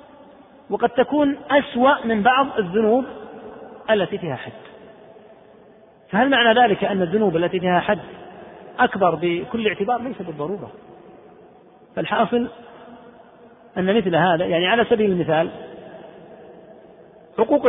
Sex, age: male, 40-59